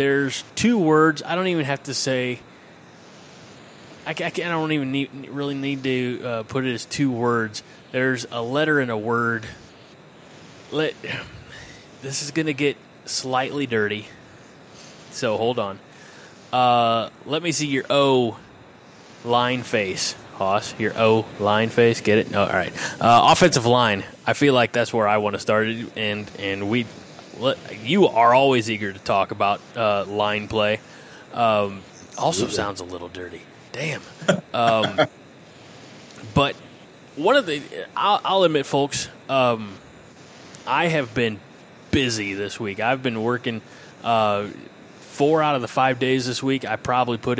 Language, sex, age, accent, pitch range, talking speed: English, male, 20-39, American, 110-135 Hz, 155 wpm